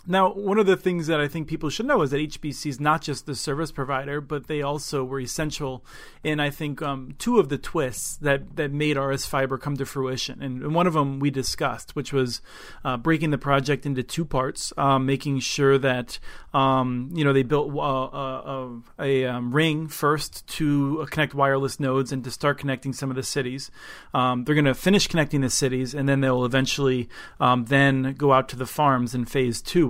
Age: 40-59